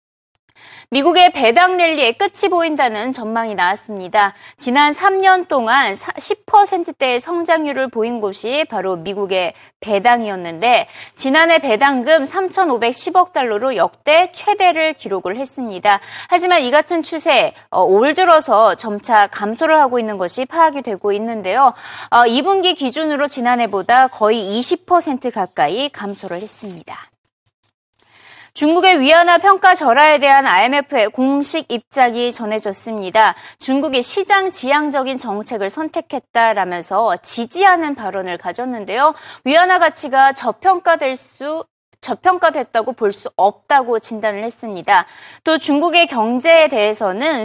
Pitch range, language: 220-320 Hz, Korean